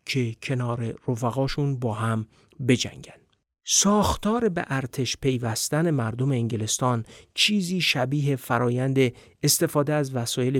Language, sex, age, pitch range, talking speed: Persian, male, 50-69, 120-150 Hz, 100 wpm